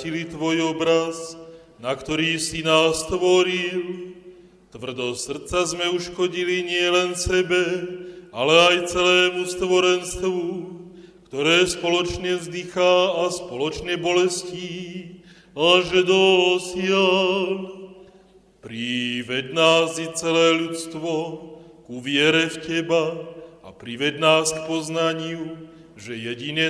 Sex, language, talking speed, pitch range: male, Slovak, 95 wpm, 160-180 Hz